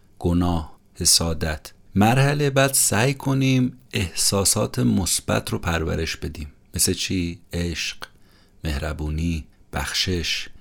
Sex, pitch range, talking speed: male, 80-100 Hz, 90 wpm